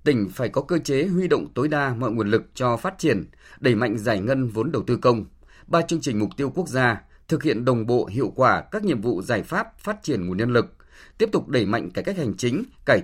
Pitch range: 105-155 Hz